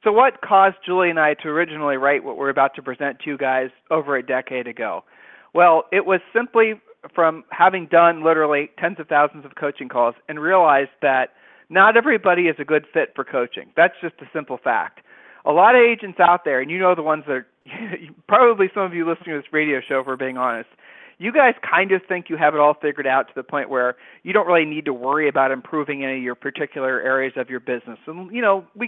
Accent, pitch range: American, 140-195 Hz